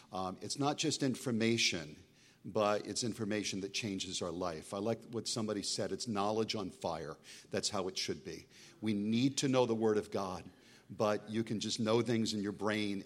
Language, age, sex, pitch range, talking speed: English, 50-69, male, 95-115 Hz, 200 wpm